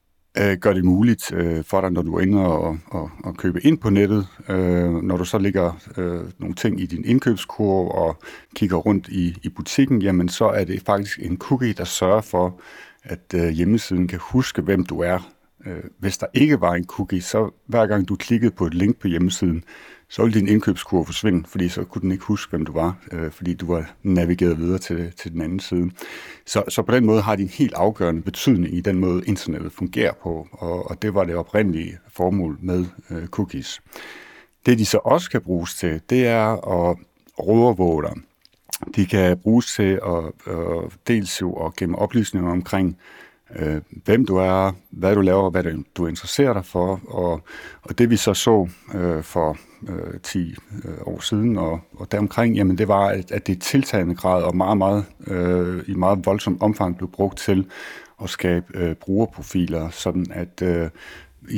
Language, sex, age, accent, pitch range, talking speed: Danish, male, 60-79, native, 85-105 Hz, 180 wpm